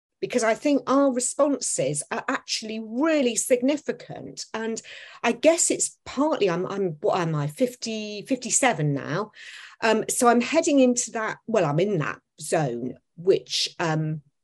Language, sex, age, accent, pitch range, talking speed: English, female, 40-59, British, 170-260 Hz, 145 wpm